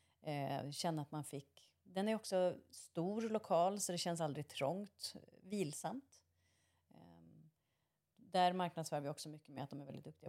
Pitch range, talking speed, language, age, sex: 150-185 Hz, 165 wpm, Swedish, 30-49, female